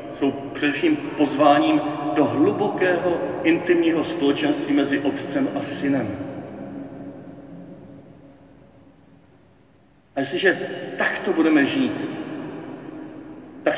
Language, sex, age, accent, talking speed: Czech, male, 40-59, native, 75 wpm